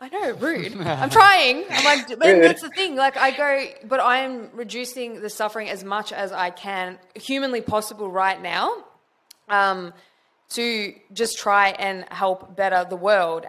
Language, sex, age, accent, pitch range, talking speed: English, female, 20-39, Australian, 185-230 Hz, 160 wpm